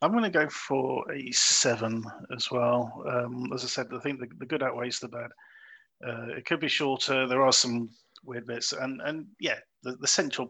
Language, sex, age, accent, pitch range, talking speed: English, male, 40-59, British, 125-155 Hz, 205 wpm